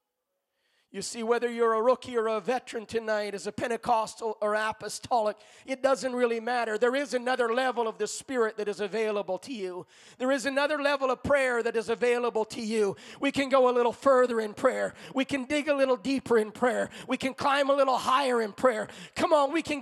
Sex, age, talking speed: male, 40-59, 210 wpm